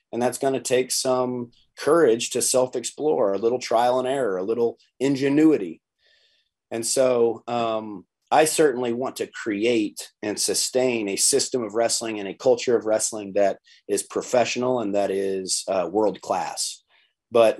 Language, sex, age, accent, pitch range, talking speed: English, male, 30-49, American, 110-130 Hz, 155 wpm